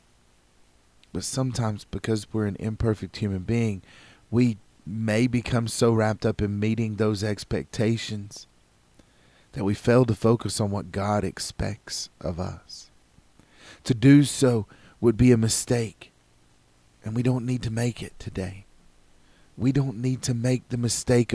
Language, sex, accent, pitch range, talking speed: English, male, American, 100-120 Hz, 145 wpm